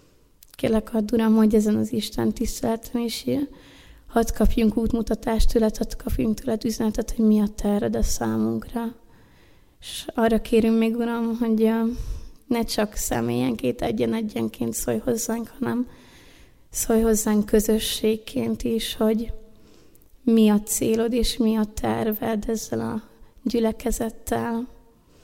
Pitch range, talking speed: 215-230 Hz, 125 wpm